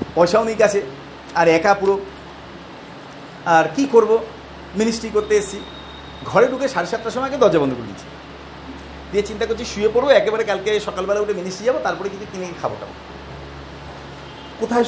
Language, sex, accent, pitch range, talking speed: Bengali, male, native, 170-230 Hz, 140 wpm